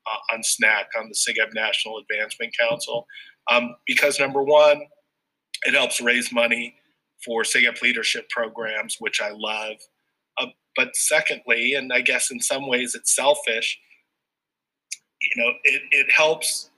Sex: male